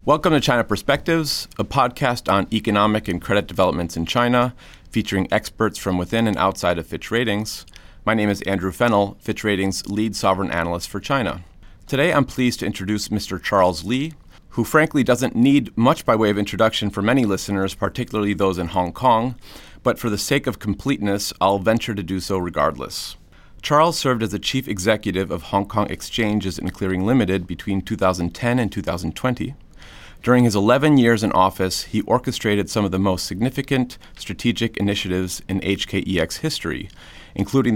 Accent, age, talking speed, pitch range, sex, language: American, 30-49, 170 wpm, 90-115 Hz, male, English